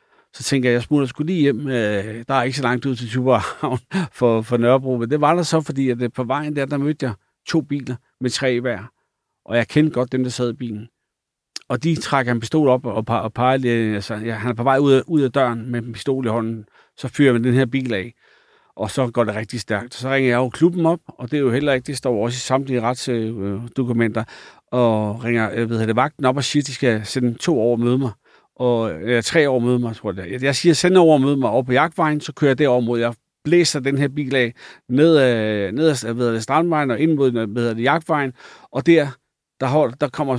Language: Danish